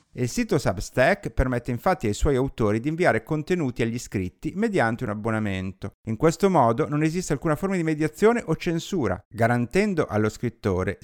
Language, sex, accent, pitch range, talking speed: Italian, male, native, 110-165 Hz, 165 wpm